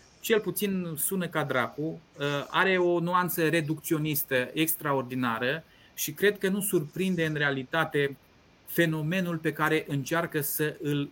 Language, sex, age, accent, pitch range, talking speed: Romanian, male, 30-49, native, 140-180 Hz, 125 wpm